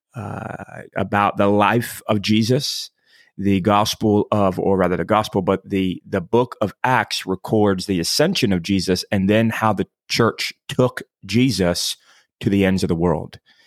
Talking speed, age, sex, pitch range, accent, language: 165 wpm, 30-49, male, 95-120 Hz, American, English